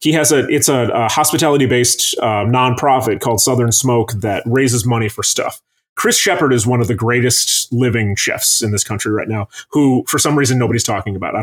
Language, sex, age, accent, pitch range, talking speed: English, male, 30-49, American, 120-145 Hz, 210 wpm